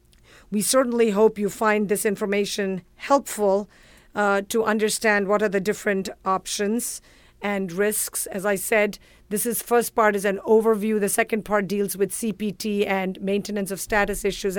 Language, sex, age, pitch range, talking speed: English, female, 50-69, 195-215 Hz, 160 wpm